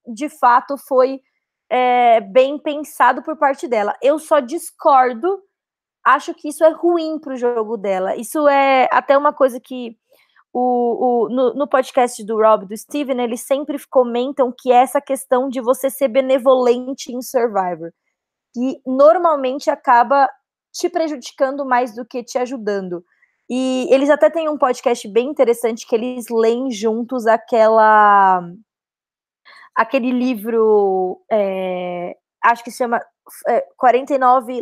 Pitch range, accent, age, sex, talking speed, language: 230-285 Hz, Brazilian, 20-39, female, 135 wpm, Portuguese